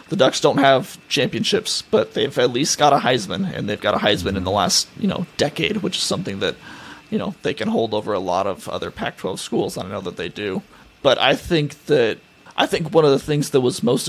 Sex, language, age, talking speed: male, English, 30-49, 245 wpm